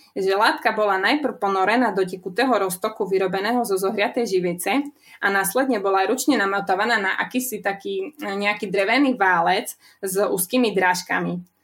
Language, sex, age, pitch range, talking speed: Slovak, female, 20-39, 190-235 Hz, 135 wpm